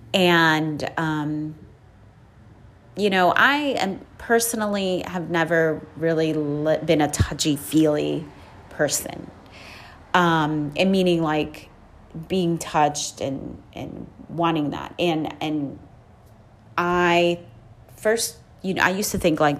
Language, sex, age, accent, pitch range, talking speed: English, female, 30-49, American, 145-180 Hz, 110 wpm